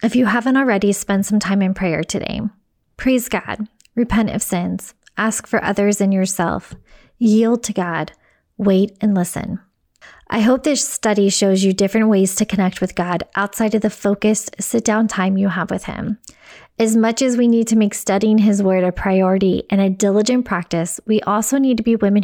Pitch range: 195-225 Hz